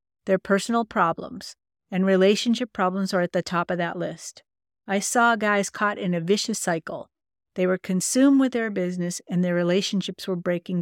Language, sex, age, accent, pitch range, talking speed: English, female, 50-69, American, 175-210 Hz, 175 wpm